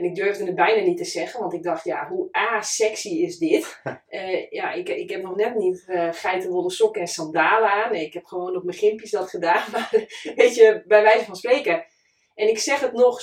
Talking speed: 220 wpm